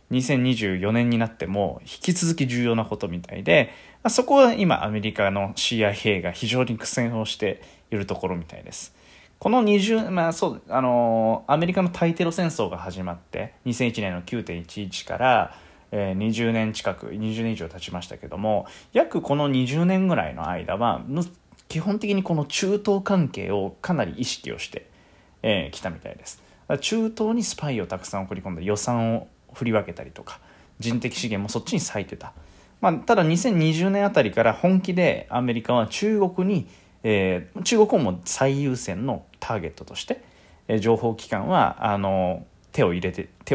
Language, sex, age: Japanese, male, 20-39